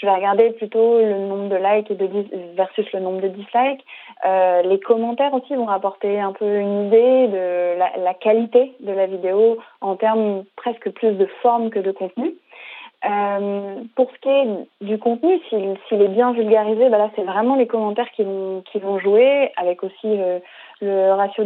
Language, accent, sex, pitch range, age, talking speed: French, French, female, 195-235 Hz, 30-49, 180 wpm